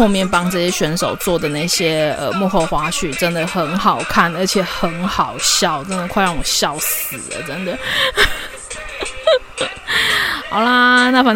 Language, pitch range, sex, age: Chinese, 165-195 Hz, female, 20-39